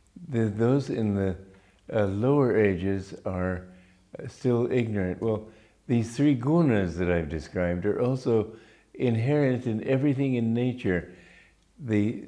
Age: 60-79